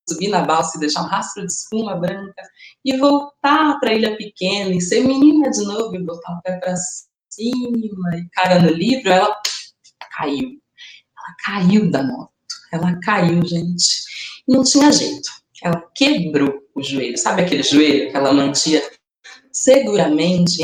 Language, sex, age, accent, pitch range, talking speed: Portuguese, female, 20-39, Brazilian, 170-285 Hz, 160 wpm